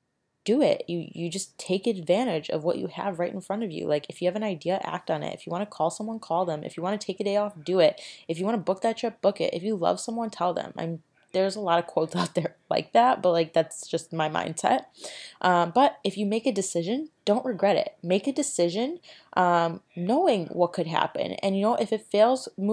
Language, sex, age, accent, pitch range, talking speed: English, female, 20-39, American, 165-220 Hz, 260 wpm